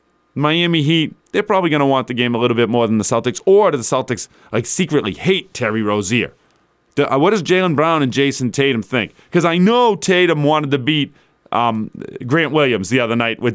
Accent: American